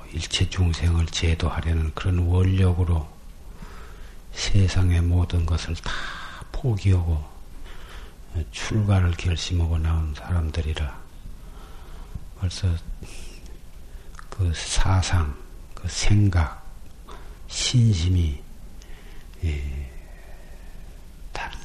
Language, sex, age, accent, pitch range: Korean, male, 60-79, native, 80-95 Hz